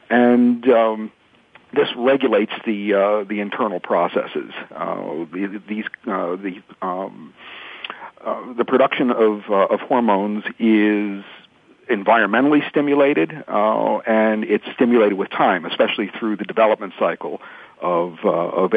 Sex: male